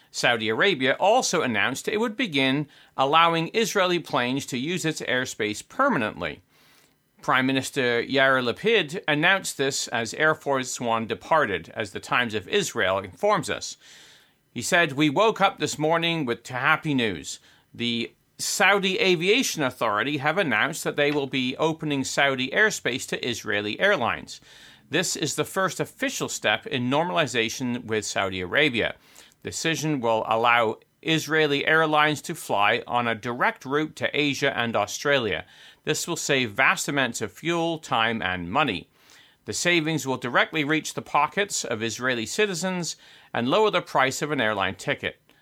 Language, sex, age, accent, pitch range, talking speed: English, male, 40-59, American, 125-165 Hz, 150 wpm